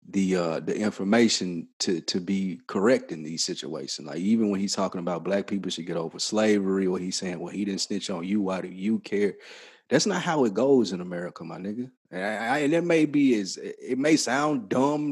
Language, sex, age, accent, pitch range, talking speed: English, male, 30-49, American, 100-130 Hz, 225 wpm